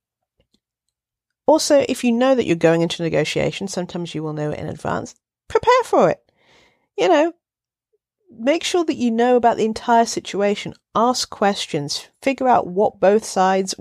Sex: female